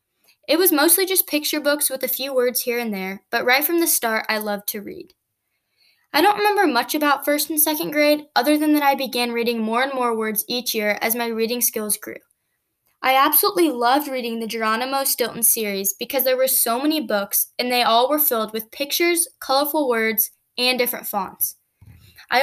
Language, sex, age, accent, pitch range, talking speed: English, female, 10-29, American, 225-295 Hz, 200 wpm